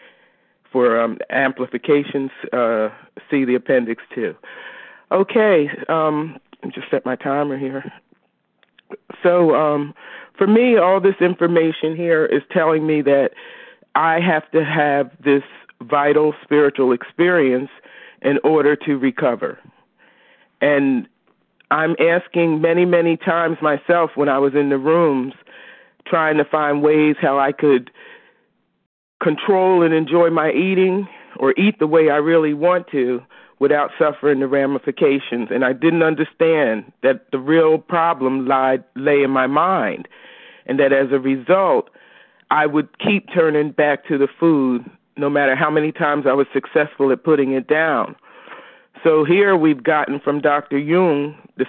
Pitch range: 140-165 Hz